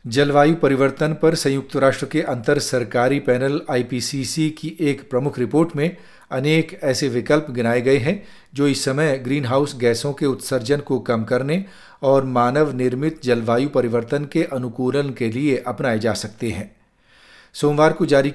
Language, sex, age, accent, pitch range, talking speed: Hindi, male, 40-59, native, 125-150 Hz, 155 wpm